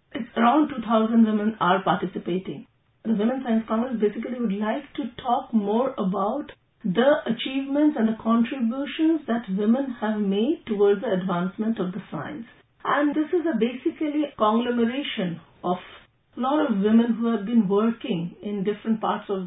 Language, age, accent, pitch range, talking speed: English, 50-69, Indian, 195-235 Hz, 160 wpm